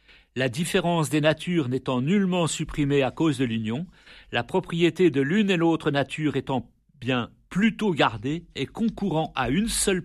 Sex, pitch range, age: male, 130-175 Hz, 50-69